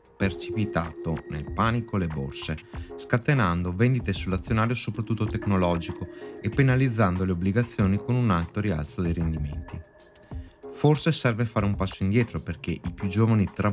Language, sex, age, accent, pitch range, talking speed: Italian, male, 20-39, native, 90-115 Hz, 135 wpm